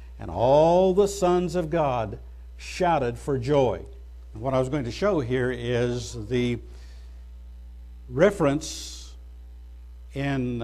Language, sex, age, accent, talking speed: English, male, 60-79, American, 115 wpm